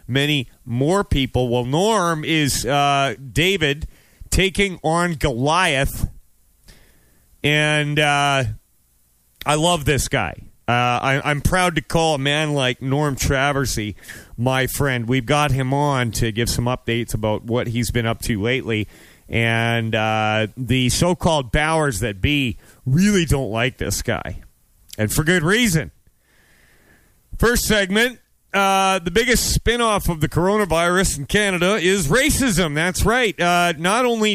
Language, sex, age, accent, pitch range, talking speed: English, male, 30-49, American, 115-155 Hz, 135 wpm